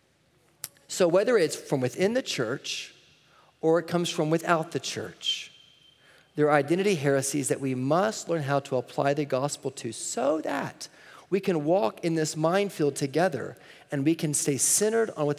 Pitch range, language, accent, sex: 155-220 Hz, English, American, male